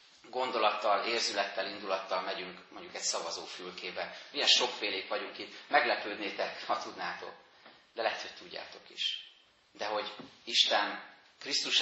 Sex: male